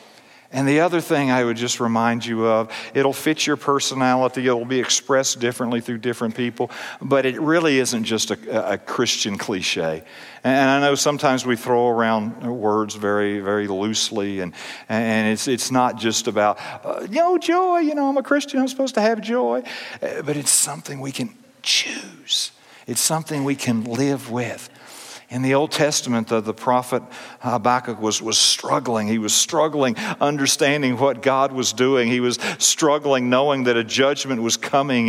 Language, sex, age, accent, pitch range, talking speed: English, male, 50-69, American, 115-135 Hz, 175 wpm